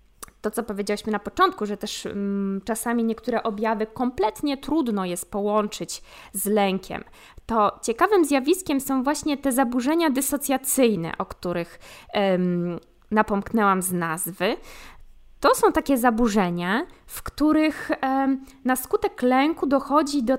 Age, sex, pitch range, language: 20-39, female, 215-285 Hz, Polish